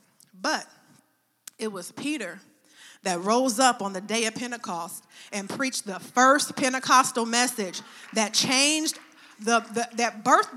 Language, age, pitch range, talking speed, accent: English, 40-59, 225-285 Hz, 135 wpm, American